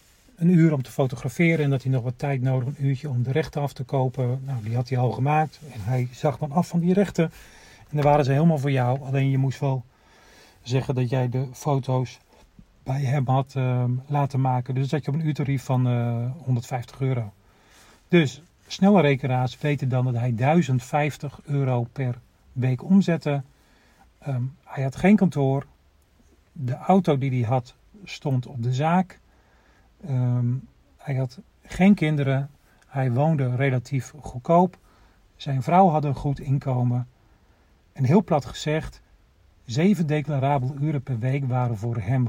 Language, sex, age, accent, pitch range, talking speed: Dutch, male, 40-59, Dutch, 125-145 Hz, 165 wpm